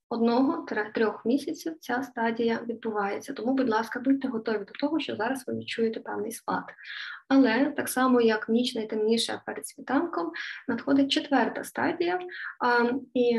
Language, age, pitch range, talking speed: Ukrainian, 20-39, 225-275 Hz, 150 wpm